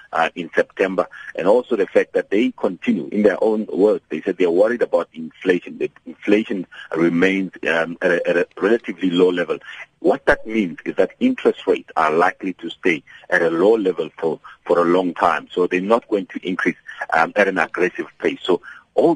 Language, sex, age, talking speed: English, male, 50-69, 195 wpm